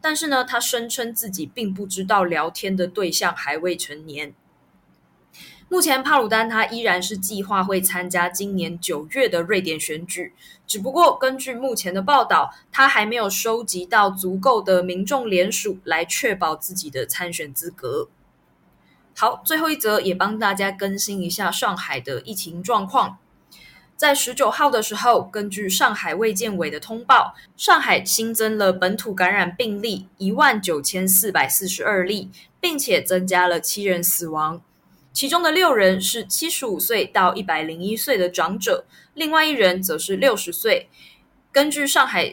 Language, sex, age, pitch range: Chinese, female, 20-39, 180-240 Hz